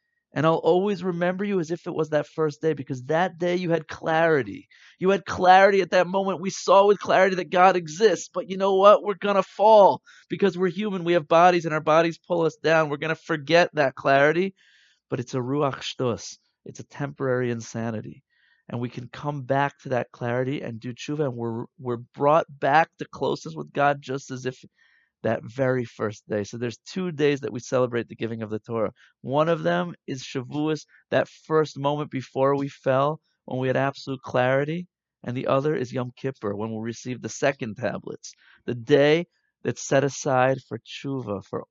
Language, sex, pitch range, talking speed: English, male, 120-165 Hz, 205 wpm